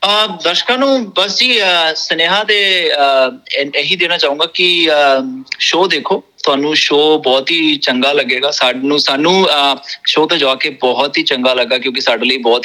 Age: 30-49